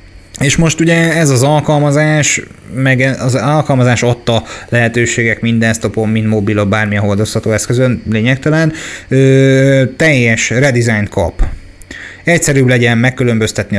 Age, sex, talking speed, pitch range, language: 30-49, male, 120 wpm, 105-125 Hz, Hungarian